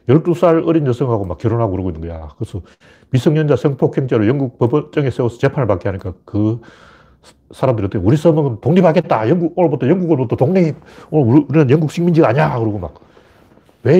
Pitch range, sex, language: 110-155 Hz, male, Korean